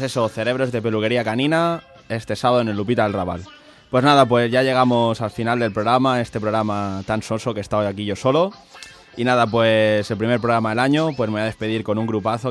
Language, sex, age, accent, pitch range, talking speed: Spanish, male, 20-39, Spanish, 105-125 Hz, 225 wpm